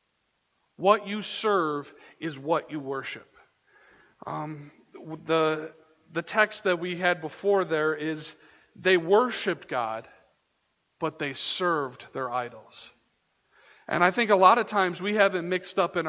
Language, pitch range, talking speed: English, 155-185 Hz, 140 wpm